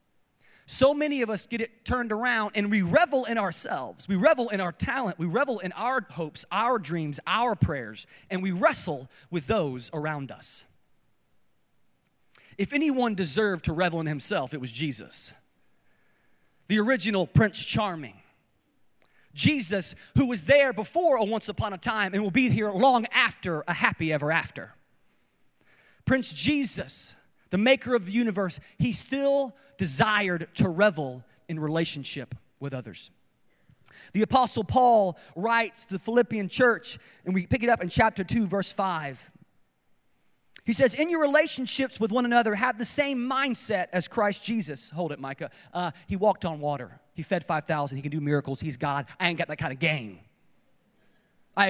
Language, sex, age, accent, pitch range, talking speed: English, male, 30-49, American, 155-230 Hz, 165 wpm